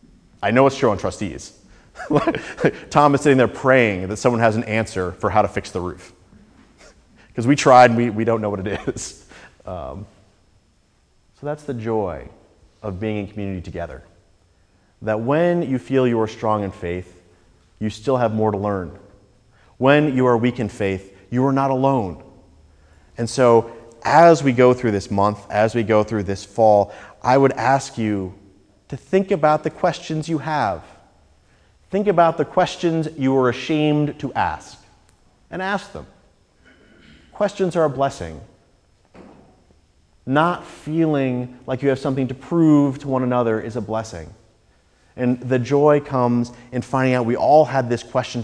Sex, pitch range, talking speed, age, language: male, 100-135 Hz, 165 wpm, 30-49, English